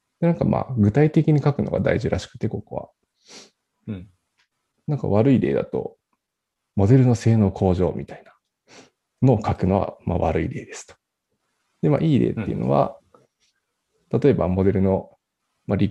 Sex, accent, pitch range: male, native, 100-130 Hz